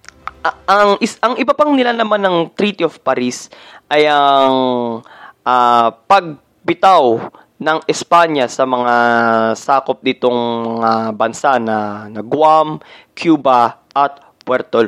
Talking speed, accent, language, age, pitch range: 115 wpm, native, Filipino, 20-39, 120-185 Hz